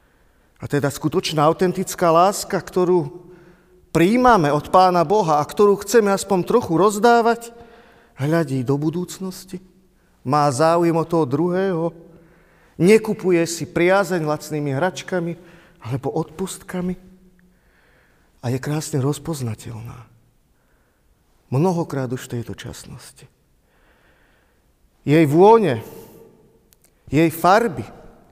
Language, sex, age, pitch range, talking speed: Slovak, male, 40-59, 145-190 Hz, 95 wpm